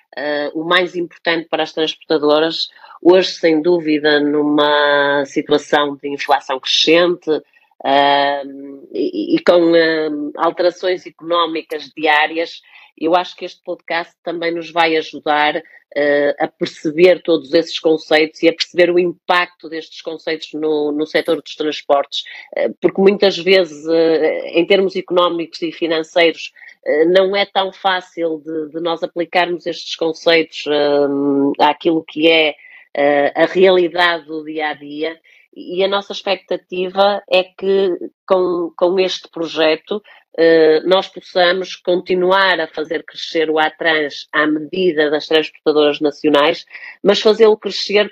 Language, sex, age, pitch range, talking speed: Portuguese, female, 40-59, 155-185 Hz, 120 wpm